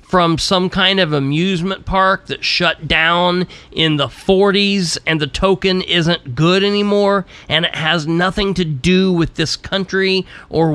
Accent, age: American, 40-59